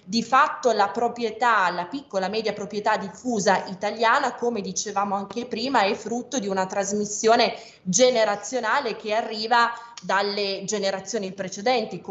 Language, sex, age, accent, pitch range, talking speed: Italian, female, 20-39, native, 190-230 Hz, 125 wpm